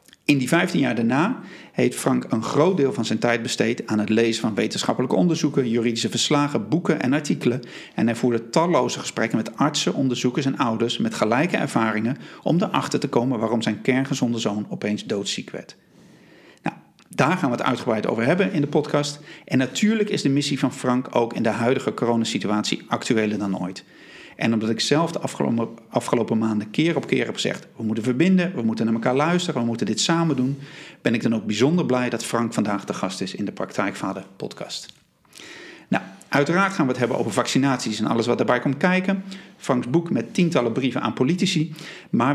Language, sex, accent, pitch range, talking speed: Dutch, male, Dutch, 115-145 Hz, 195 wpm